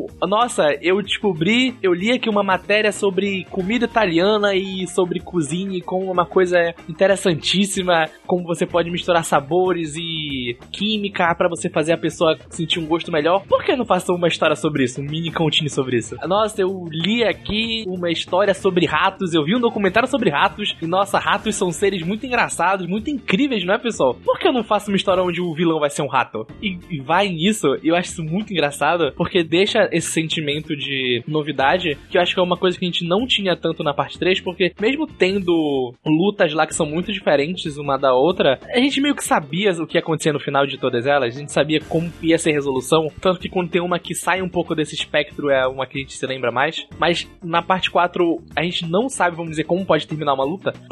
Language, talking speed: Portuguese, 220 wpm